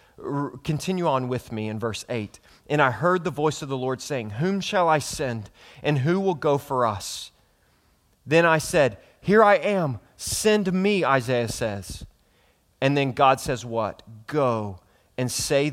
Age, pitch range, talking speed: 30-49, 100-135 Hz, 170 wpm